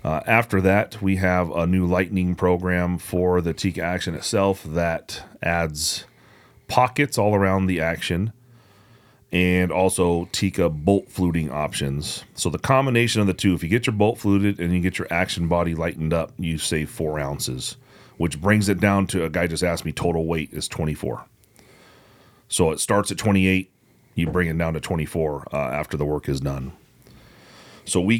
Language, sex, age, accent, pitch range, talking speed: English, male, 30-49, American, 85-105 Hz, 180 wpm